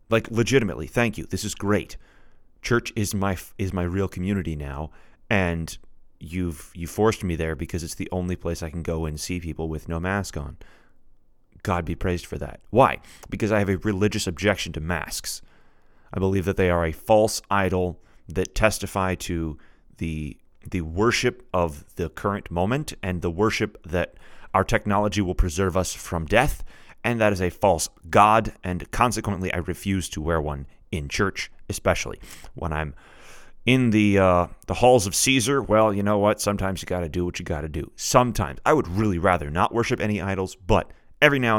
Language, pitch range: English, 85-105 Hz